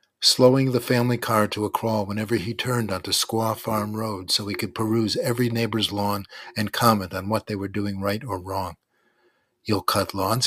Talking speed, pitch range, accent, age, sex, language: 195 wpm, 110-150 Hz, American, 50-69, male, English